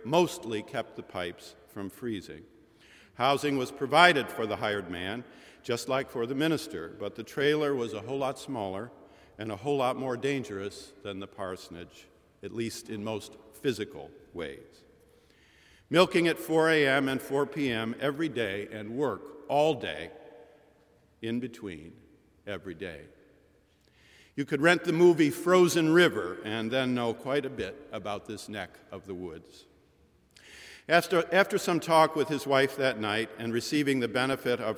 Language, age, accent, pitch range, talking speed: English, 50-69, American, 110-145 Hz, 155 wpm